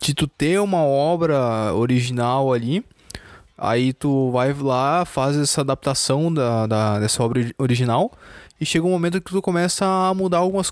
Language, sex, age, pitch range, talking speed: Portuguese, male, 20-39, 120-155 Hz, 160 wpm